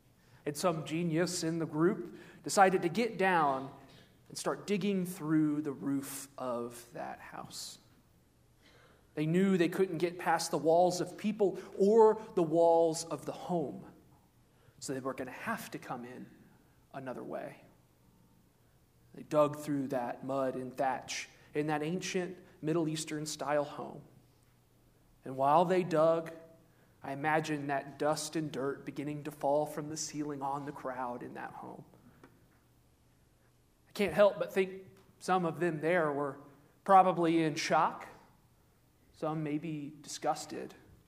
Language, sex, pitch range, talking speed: English, male, 140-185 Hz, 145 wpm